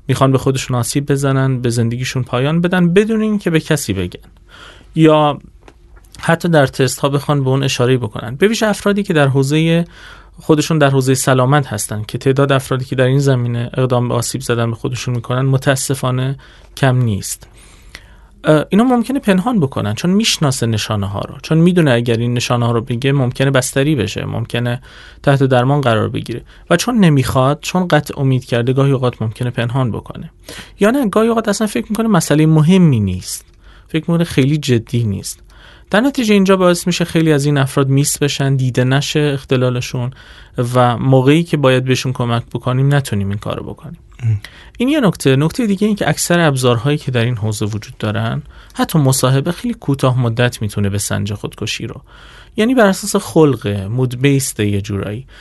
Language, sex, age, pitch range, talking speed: Persian, male, 30-49, 120-160 Hz, 170 wpm